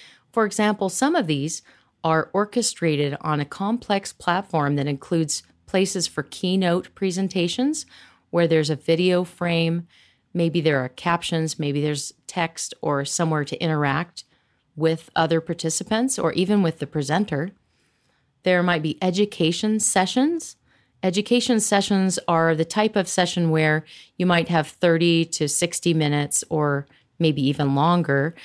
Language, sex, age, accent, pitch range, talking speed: English, female, 40-59, American, 155-190 Hz, 135 wpm